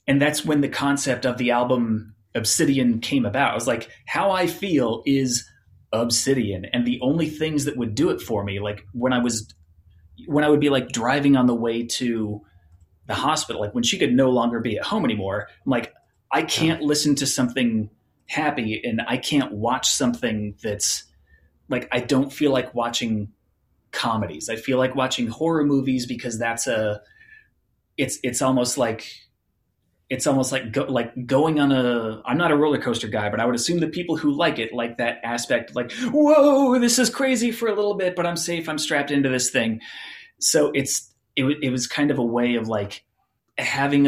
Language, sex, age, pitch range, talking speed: English, male, 30-49, 110-140 Hz, 195 wpm